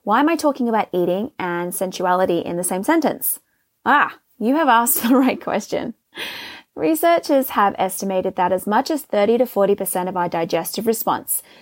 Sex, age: female, 20-39